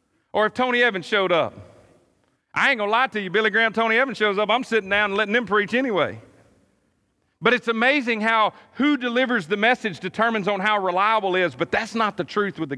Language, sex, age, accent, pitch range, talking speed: English, male, 40-59, American, 125-210 Hz, 225 wpm